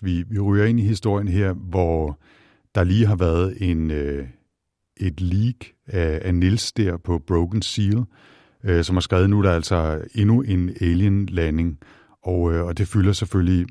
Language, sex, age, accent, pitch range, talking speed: Danish, male, 60-79, native, 85-100 Hz, 160 wpm